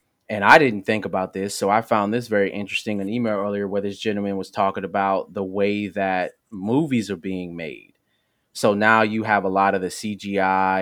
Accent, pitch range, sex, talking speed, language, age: American, 95-110 Hz, male, 205 wpm, English, 20-39